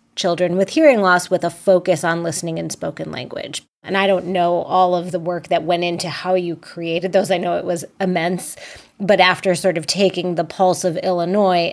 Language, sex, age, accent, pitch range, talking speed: English, female, 30-49, American, 170-190 Hz, 210 wpm